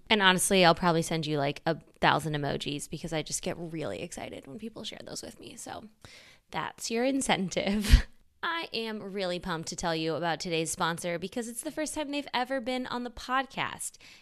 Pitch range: 165-220 Hz